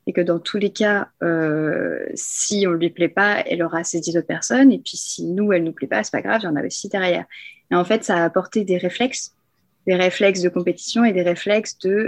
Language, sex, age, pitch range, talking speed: French, female, 20-39, 180-220 Hz, 270 wpm